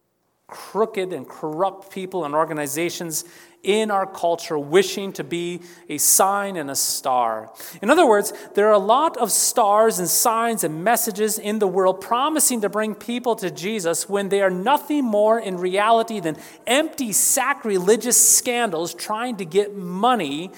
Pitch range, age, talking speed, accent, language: 165-220 Hz, 30-49, 155 wpm, American, English